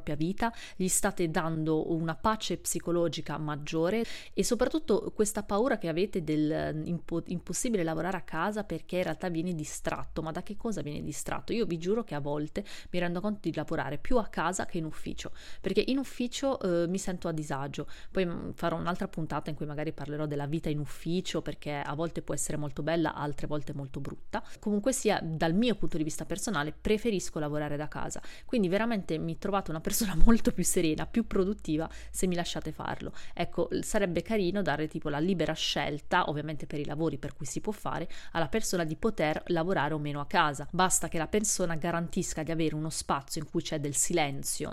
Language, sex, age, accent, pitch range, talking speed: Italian, female, 30-49, native, 155-195 Hz, 195 wpm